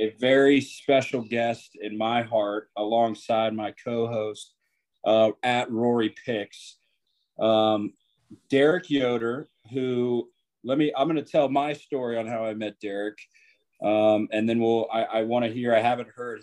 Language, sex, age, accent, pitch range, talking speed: English, male, 30-49, American, 110-125 Hz, 150 wpm